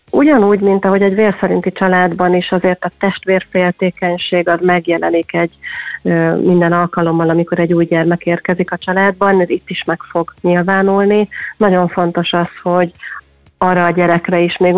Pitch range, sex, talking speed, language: 170-185 Hz, female, 150 wpm, Hungarian